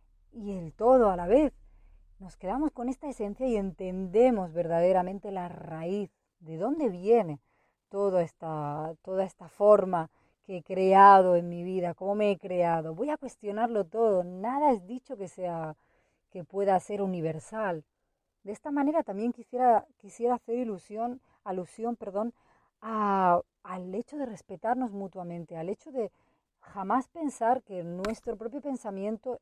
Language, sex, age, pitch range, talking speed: Spanish, female, 30-49, 180-240 Hz, 135 wpm